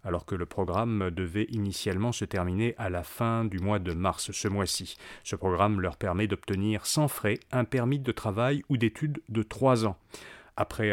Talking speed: 185 wpm